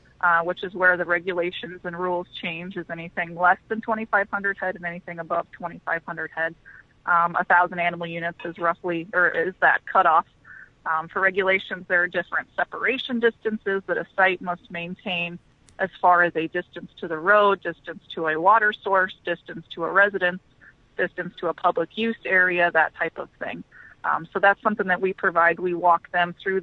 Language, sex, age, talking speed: English, female, 30-49, 195 wpm